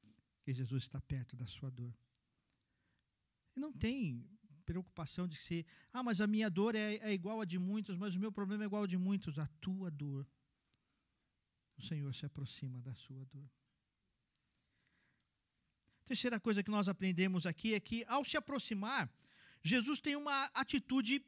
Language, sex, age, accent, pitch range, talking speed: Portuguese, male, 50-69, Brazilian, 130-220 Hz, 165 wpm